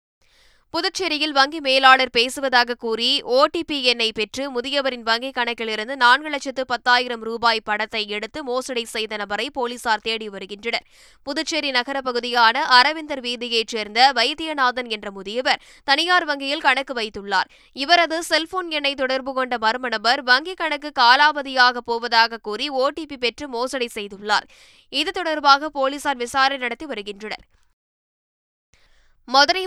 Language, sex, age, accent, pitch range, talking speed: Tamil, female, 20-39, native, 240-285 Hz, 115 wpm